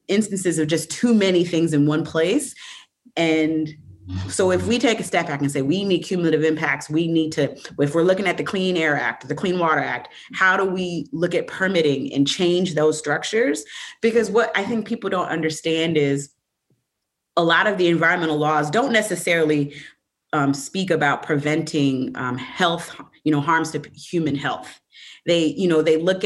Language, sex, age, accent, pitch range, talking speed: English, female, 30-49, American, 145-180 Hz, 185 wpm